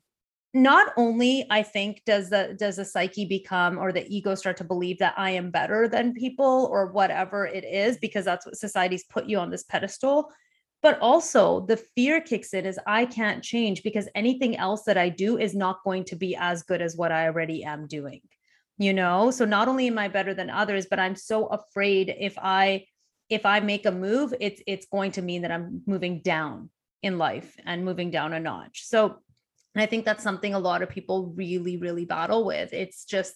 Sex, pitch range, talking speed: female, 185-220 Hz, 210 wpm